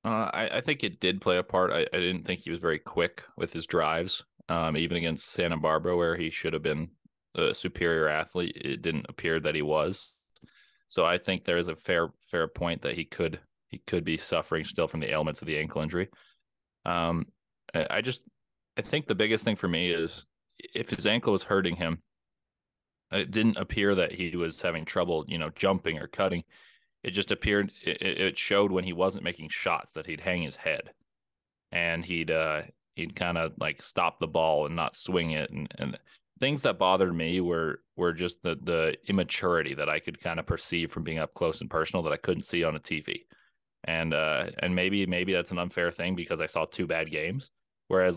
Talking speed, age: 210 wpm, 20-39